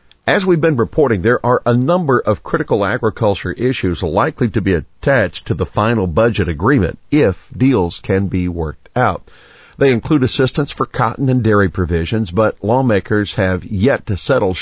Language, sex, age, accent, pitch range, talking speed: English, male, 50-69, American, 90-115 Hz, 170 wpm